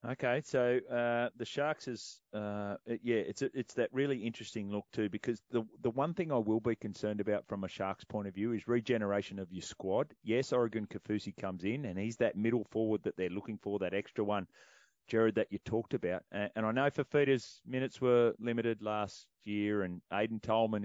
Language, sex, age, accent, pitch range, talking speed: English, male, 30-49, Australian, 100-120 Hz, 205 wpm